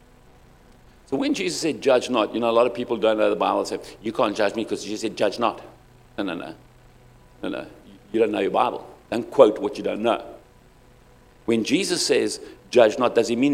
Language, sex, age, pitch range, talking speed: English, male, 60-79, 105-125 Hz, 220 wpm